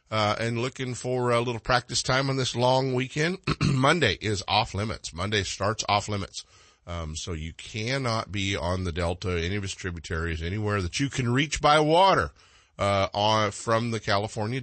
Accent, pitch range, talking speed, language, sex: American, 90-120 Hz, 180 wpm, English, male